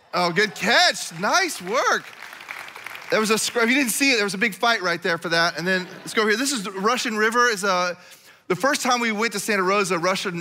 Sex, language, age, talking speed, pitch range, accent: male, English, 30-49, 240 wpm, 170-220 Hz, American